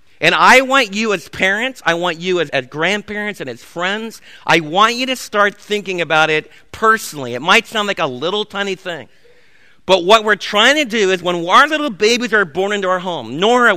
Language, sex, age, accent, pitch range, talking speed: English, male, 50-69, American, 175-230 Hz, 215 wpm